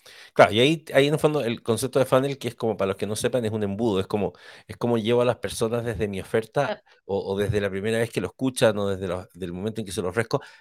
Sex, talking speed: male, 290 wpm